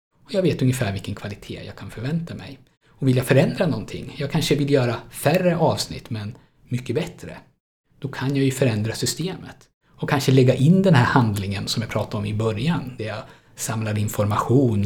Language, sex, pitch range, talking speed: Swedish, male, 110-140 Hz, 190 wpm